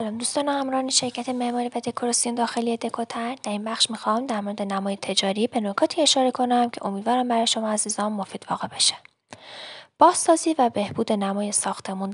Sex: female